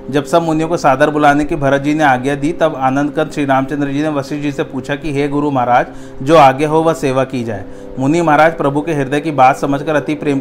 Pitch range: 135-150 Hz